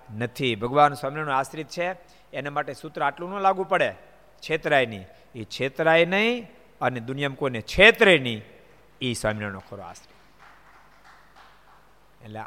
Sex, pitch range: male, 120-180 Hz